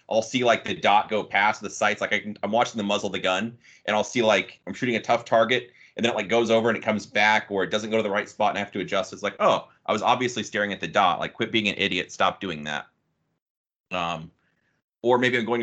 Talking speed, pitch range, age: 275 wpm, 95-115 Hz, 30-49